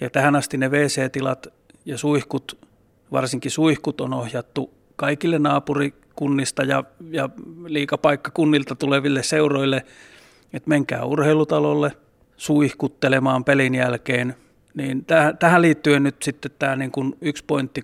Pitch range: 130-145 Hz